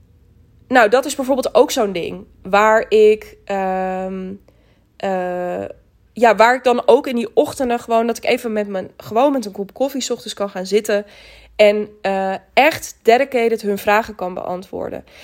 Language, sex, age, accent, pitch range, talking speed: Dutch, female, 20-39, Dutch, 190-230 Hz, 165 wpm